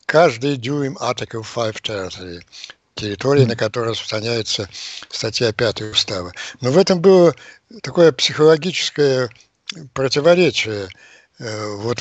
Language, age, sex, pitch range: Russian, 60-79, male, 120-145 Hz